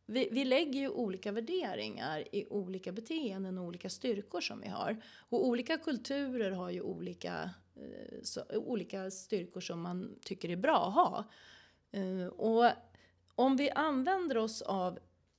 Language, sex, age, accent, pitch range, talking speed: Swedish, female, 30-49, native, 180-240 Hz, 155 wpm